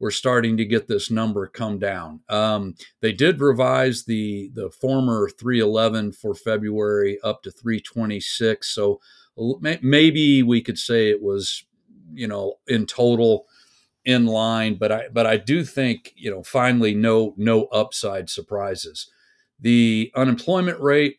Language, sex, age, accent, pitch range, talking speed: English, male, 40-59, American, 100-130 Hz, 150 wpm